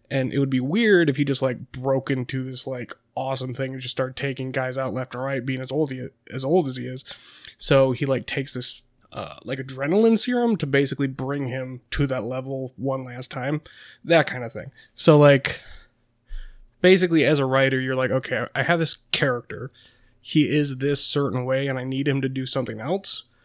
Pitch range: 130-155 Hz